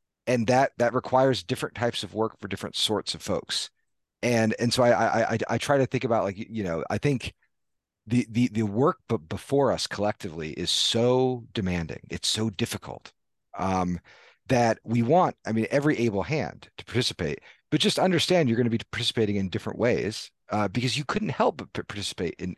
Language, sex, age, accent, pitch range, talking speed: English, male, 40-59, American, 105-135 Hz, 195 wpm